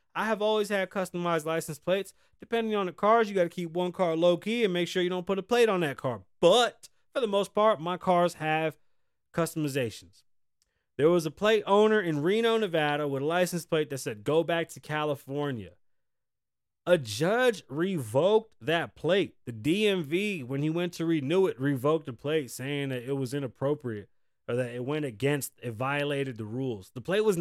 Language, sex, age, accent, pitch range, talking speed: English, male, 30-49, American, 135-180 Hz, 195 wpm